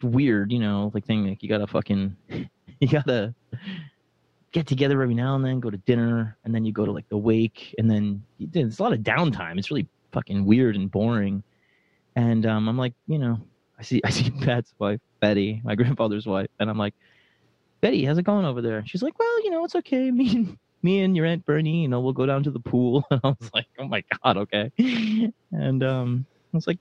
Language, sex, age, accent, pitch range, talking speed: English, male, 20-39, American, 100-135 Hz, 225 wpm